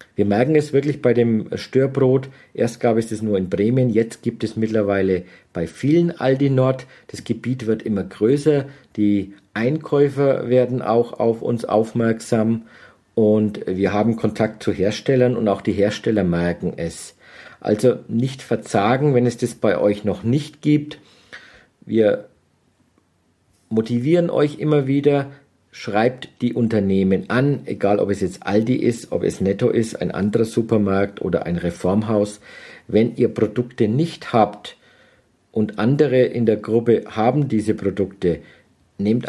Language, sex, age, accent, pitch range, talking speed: German, male, 50-69, German, 105-130 Hz, 145 wpm